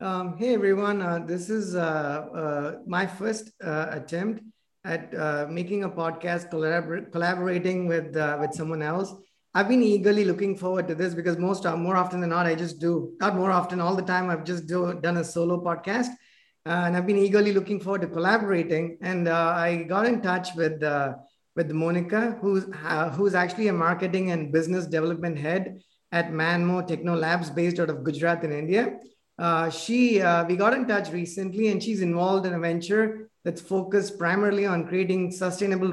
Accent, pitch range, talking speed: Indian, 170-195 Hz, 185 wpm